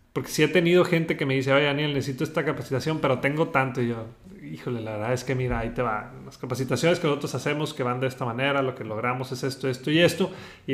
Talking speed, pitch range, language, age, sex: 255 wpm, 125-155 Hz, Spanish, 30-49, male